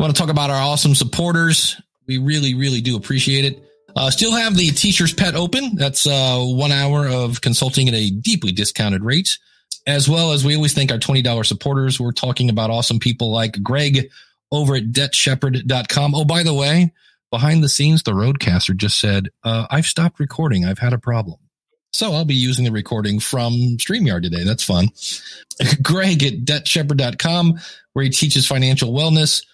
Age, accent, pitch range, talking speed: 40-59, American, 120-155 Hz, 180 wpm